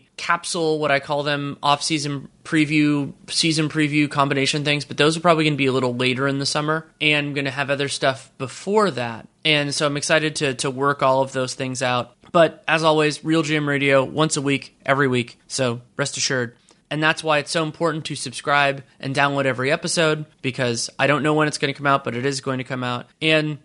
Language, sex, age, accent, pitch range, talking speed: English, male, 30-49, American, 130-155 Hz, 225 wpm